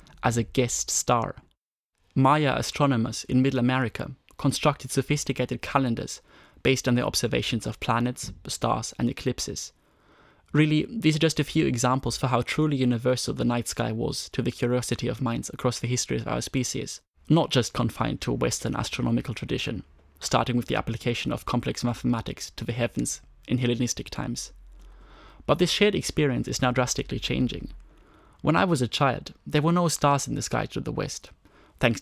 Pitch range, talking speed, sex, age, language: 120-140 Hz, 170 wpm, male, 20-39, English